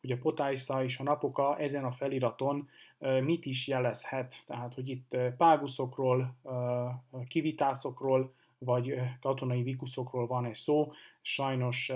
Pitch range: 125-140 Hz